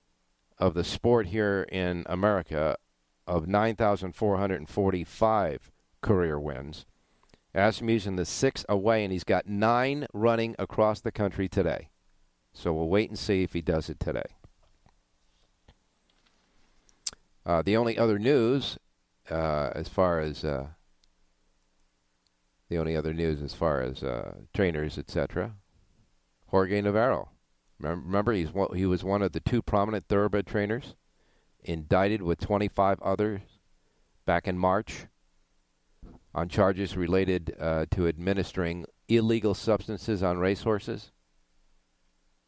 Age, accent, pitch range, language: 50-69, American, 75-100 Hz, English